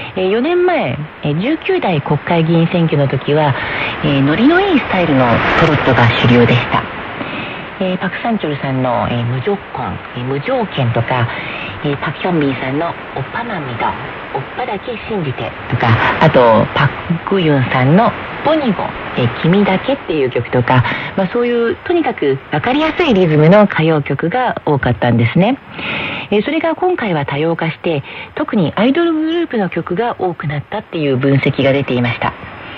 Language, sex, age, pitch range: Korean, female, 40-59, 135-215 Hz